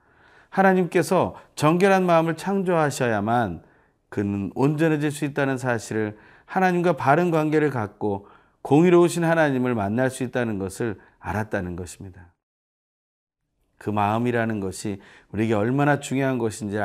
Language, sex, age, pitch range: Korean, male, 30-49, 105-150 Hz